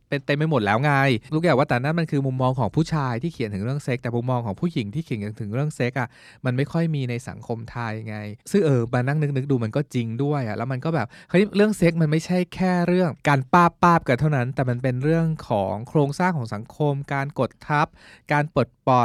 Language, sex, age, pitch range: Thai, male, 20-39, 115-145 Hz